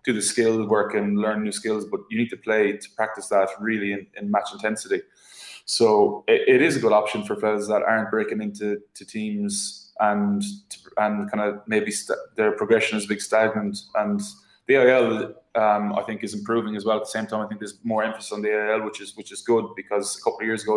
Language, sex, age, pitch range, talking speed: English, male, 20-39, 105-110 Hz, 235 wpm